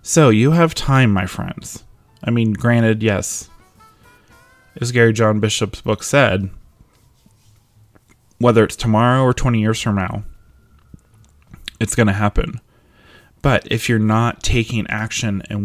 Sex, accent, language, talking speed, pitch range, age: male, American, English, 135 wpm, 100-110 Hz, 20-39